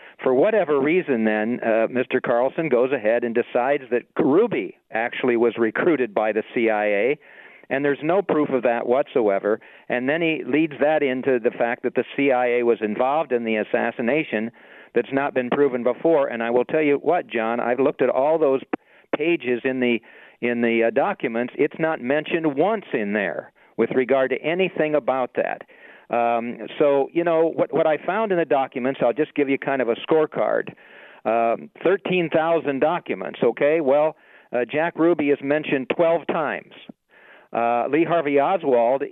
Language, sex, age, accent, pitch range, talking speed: English, male, 50-69, American, 120-155 Hz, 175 wpm